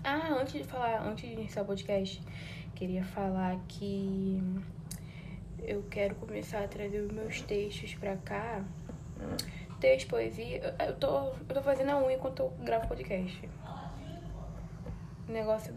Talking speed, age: 135 wpm, 10-29